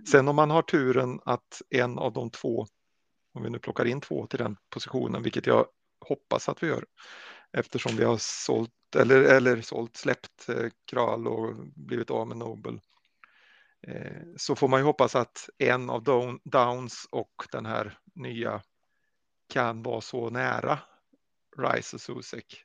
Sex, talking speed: male, 160 wpm